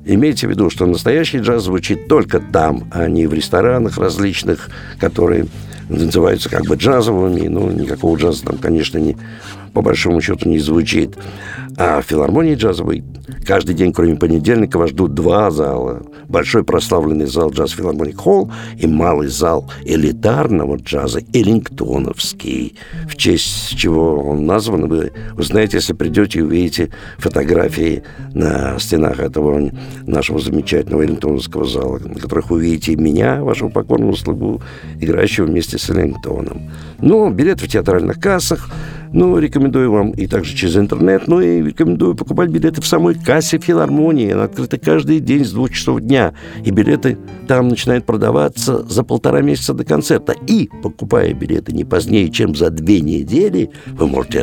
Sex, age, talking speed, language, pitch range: male, 60-79, 150 wpm, Russian, 80-125 Hz